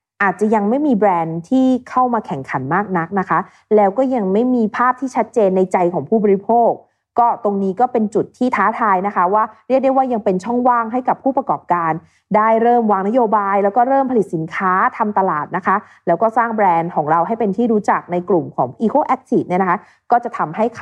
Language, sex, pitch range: Thai, female, 185-250 Hz